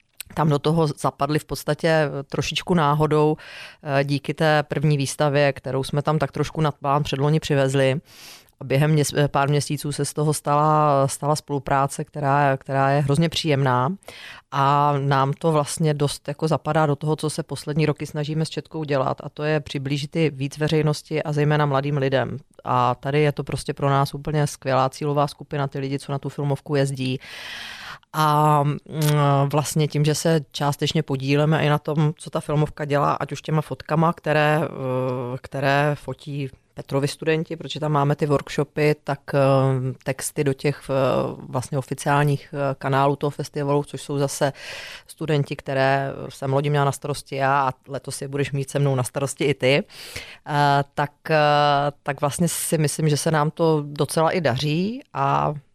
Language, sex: Czech, female